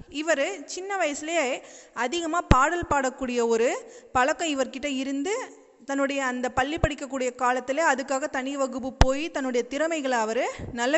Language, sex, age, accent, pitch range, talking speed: Tamil, female, 30-49, native, 250-305 Hz, 125 wpm